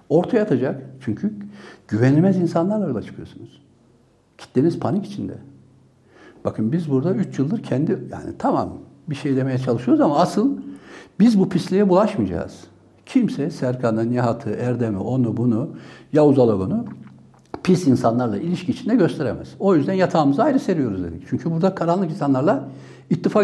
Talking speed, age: 135 wpm, 60-79